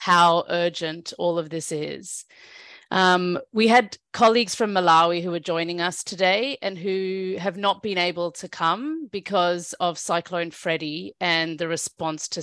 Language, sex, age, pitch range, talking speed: English, female, 40-59, 175-230 Hz, 160 wpm